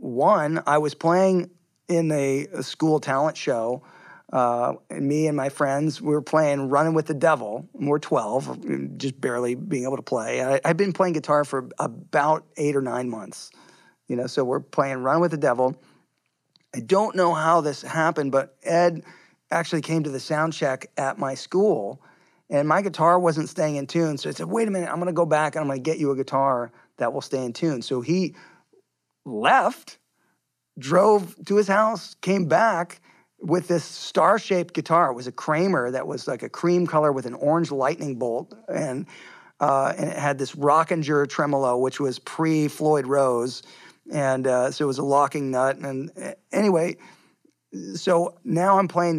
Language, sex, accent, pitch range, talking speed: English, male, American, 135-170 Hz, 185 wpm